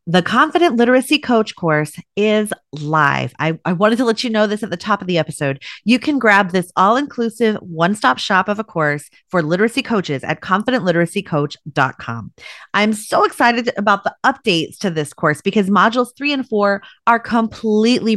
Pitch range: 165-225 Hz